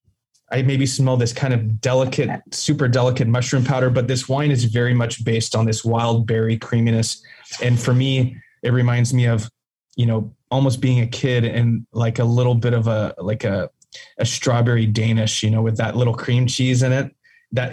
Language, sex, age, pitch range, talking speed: English, male, 20-39, 115-130 Hz, 195 wpm